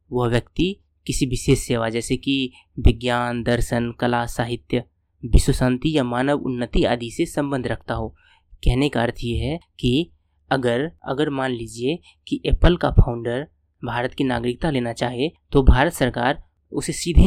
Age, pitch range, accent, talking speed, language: 20-39, 120-145 Hz, native, 155 wpm, Hindi